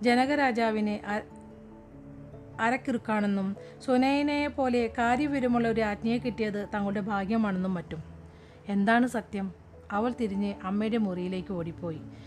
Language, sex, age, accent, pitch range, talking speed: Malayalam, female, 40-59, native, 175-225 Hz, 90 wpm